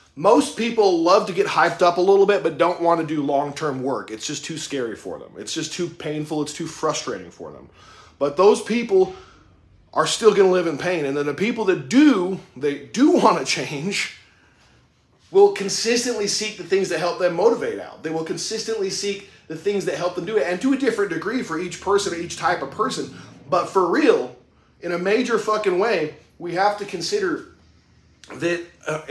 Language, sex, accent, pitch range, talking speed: English, male, American, 145-195 Hz, 205 wpm